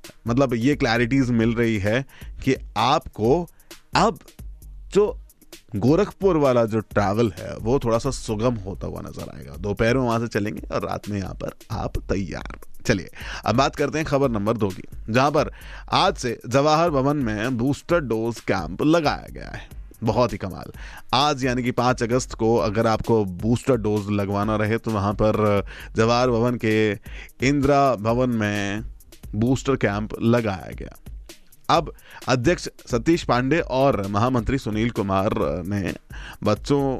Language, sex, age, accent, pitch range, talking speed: Hindi, male, 30-49, native, 100-125 Hz, 155 wpm